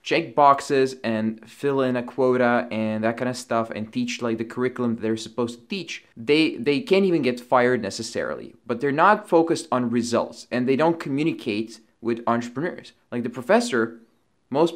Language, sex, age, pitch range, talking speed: English, male, 20-39, 115-135 Hz, 180 wpm